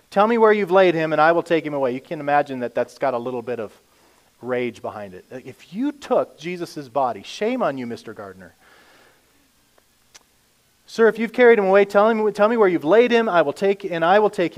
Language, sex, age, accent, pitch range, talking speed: English, male, 30-49, American, 140-195 Hz, 230 wpm